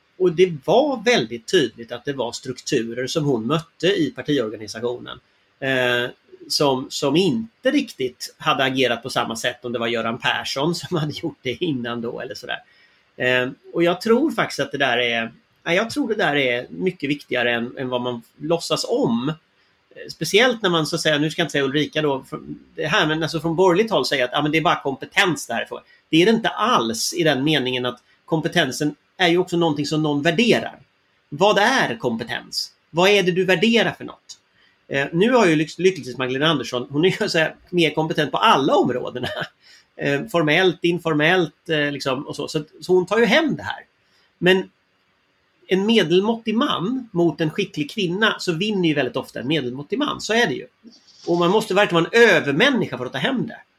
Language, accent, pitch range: Swedish, native, 130-185 Hz